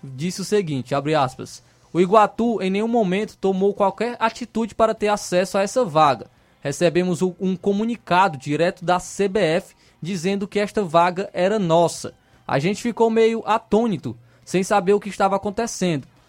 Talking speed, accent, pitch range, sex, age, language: 160 wpm, Brazilian, 155-195 Hz, male, 20-39, Portuguese